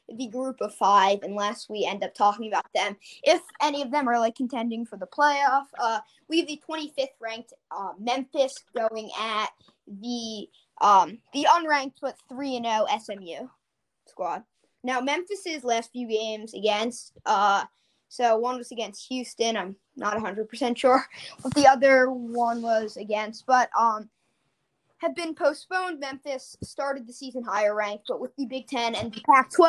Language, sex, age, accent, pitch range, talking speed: English, female, 20-39, American, 215-275 Hz, 165 wpm